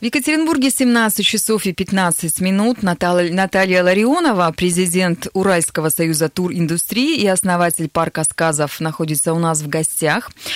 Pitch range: 165-230 Hz